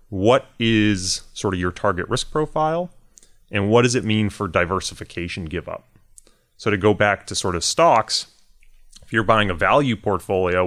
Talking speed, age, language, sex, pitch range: 175 wpm, 30-49, English, male, 90-115 Hz